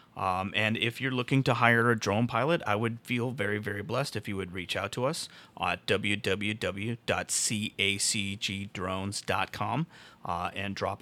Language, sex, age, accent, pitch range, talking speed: English, male, 30-49, American, 105-140 Hz, 145 wpm